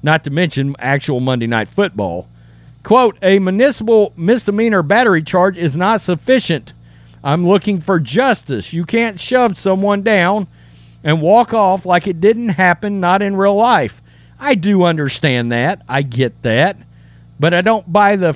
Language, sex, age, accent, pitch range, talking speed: English, male, 50-69, American, 145-210 Hz, 155 wpm